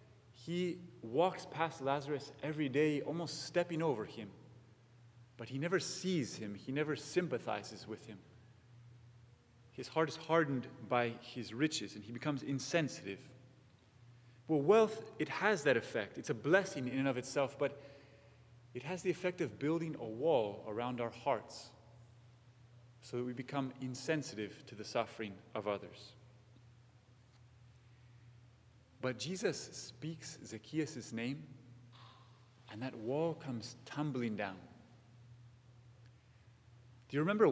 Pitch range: 120-145 Hz